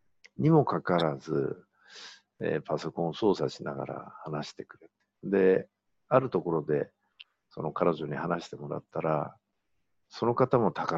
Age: 50-69